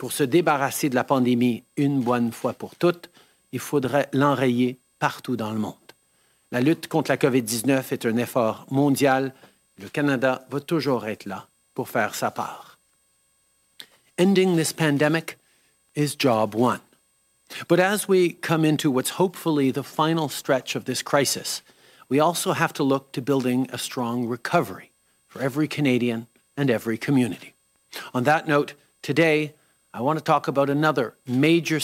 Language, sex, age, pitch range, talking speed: English, male, 50-69, 125-155 Hz, 155 wpm